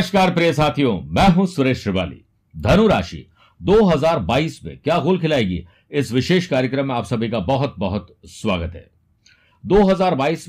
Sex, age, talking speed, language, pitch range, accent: male, 60-79, 150 wpm, Hindi, 100-155 Hz, native